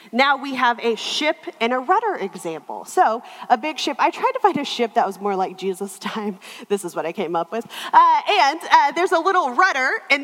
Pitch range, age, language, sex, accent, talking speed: 235-360 Hz, 30-49, English, female, American, 235 wpm